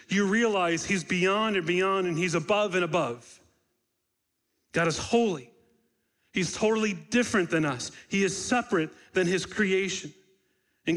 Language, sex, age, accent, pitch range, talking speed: English, male, 40-59, American, 160-195 Hz, 140 wpm